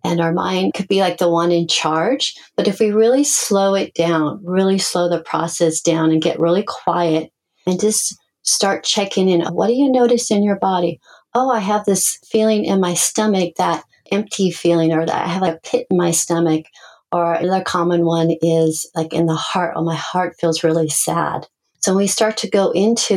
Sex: female